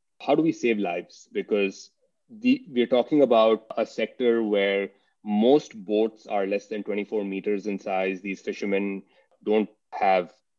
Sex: male